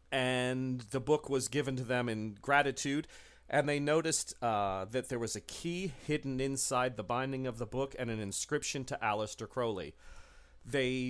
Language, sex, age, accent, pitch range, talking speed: English, male, 40-59, American, 115-145 Hz, 175 wpm